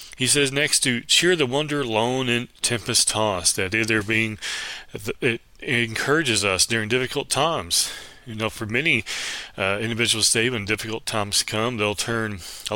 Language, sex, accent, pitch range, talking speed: English, male, American, 105-135 Hz, 165 wpm